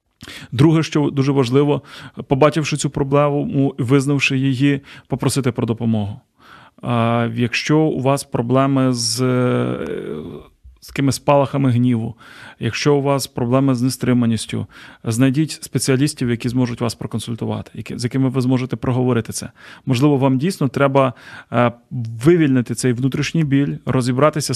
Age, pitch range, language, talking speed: 30-49, 125-140 Hz, Ukrainian, 120 wpm